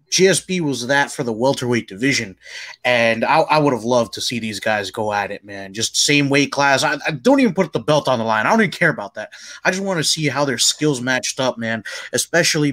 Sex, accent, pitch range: male, American, 115-145 Hz